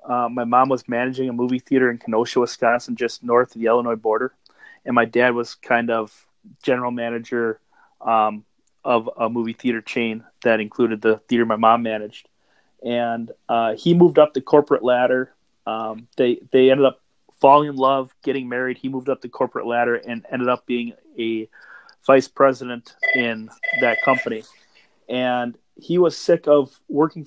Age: 30-49